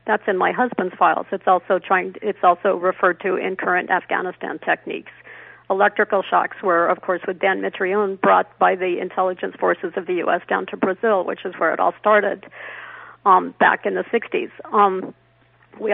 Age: 50-69